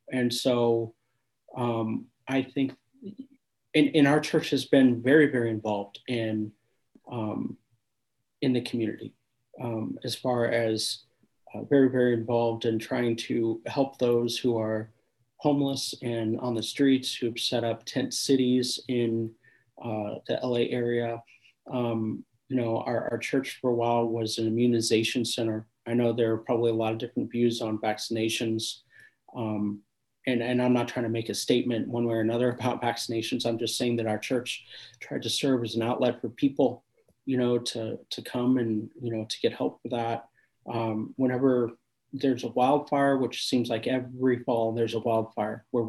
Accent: American